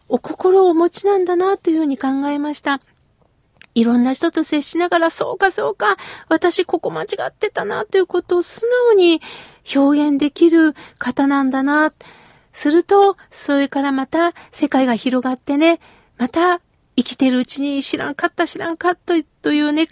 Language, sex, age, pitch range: Japanese, female, 40-59, 265-345 Hz